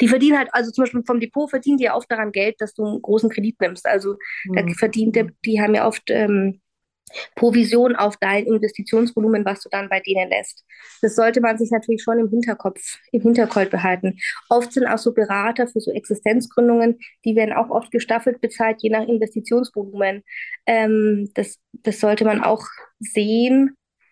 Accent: German